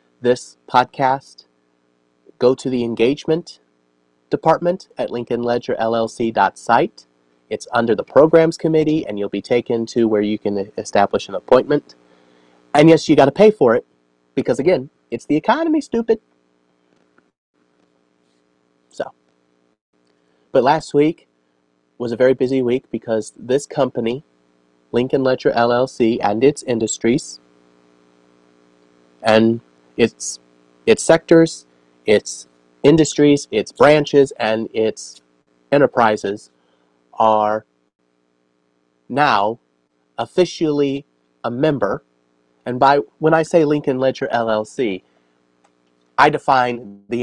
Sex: male